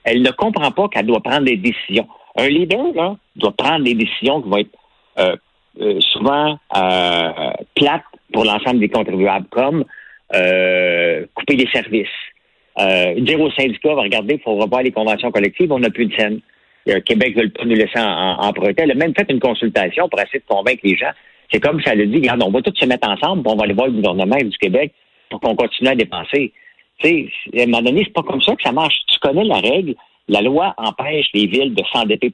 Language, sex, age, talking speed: French, male, 50-69, 215 wpm